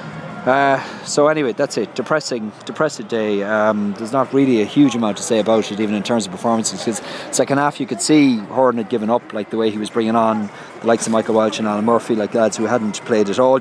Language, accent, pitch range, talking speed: English, Irish, 110-135 Hz, 245 wpm